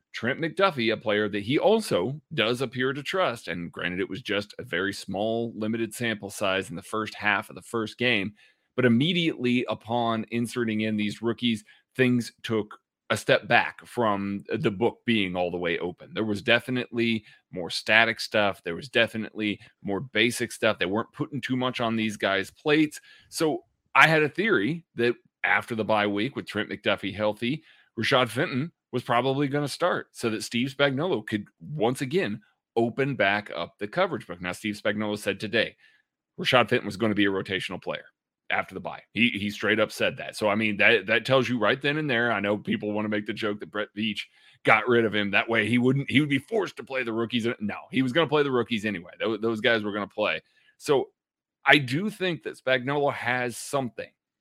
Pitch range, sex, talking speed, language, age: 105-135 Hz, male, 210 wpm, English, 30-49